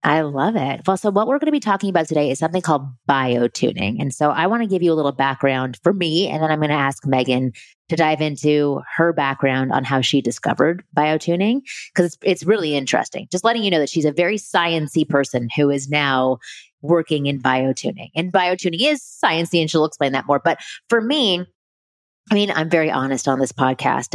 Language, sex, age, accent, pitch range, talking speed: English, female, 30-49, American, 140-195 Hz, 225 wpm